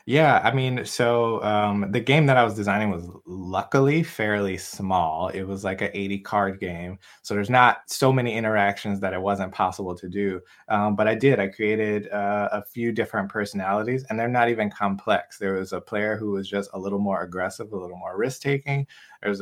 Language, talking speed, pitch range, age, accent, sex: English, 205 wpm, 95-110 Hz, 20-39, American, male